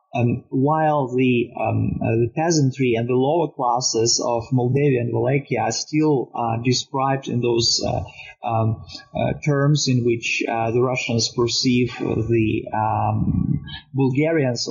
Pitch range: 115-135 Hz